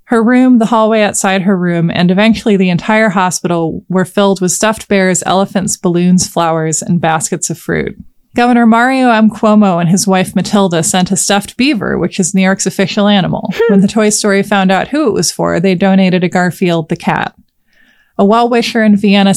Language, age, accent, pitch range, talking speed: English, 20-39, American, 180-220 Hz, 190 wpm